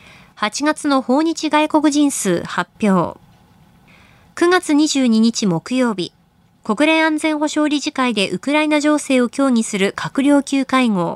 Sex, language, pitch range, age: female, Japanese, 205-295 Hz, 20-39